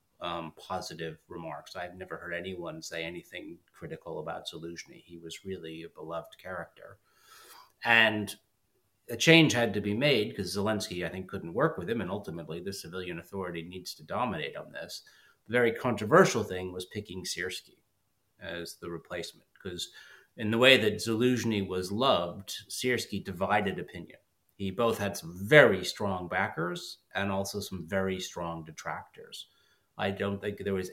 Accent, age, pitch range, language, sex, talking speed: American, 30-49, 90-110 Hz, English, male, 160 wpm